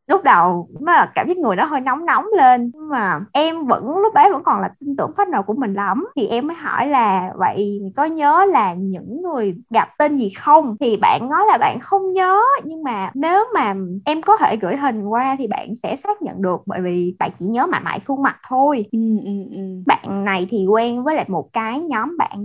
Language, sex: Vietnamese, female